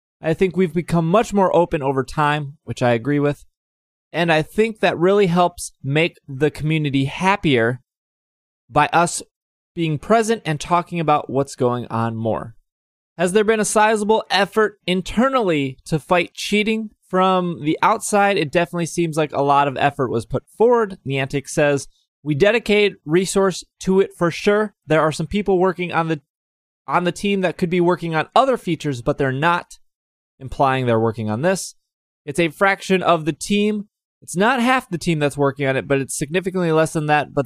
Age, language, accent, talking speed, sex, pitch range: 20-39, English, American, 180 wpm, male, 140-185 Hz